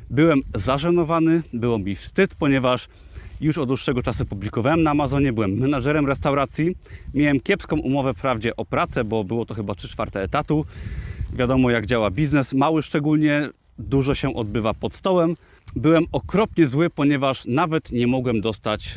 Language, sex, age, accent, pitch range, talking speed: Polish, male, 30-49, native, 115-155 Hz, 150 wpm